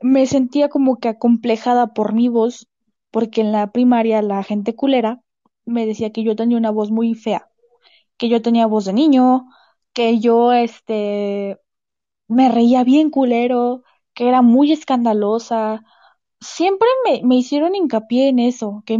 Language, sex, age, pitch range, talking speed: Spanish, female, 10-29, 225-295 Hz, 155 wpm